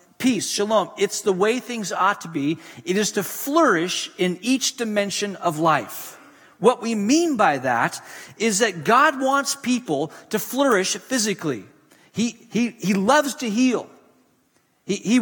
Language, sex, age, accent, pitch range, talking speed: English, male, 40-59, American, 205-280 Hz, 155 wpm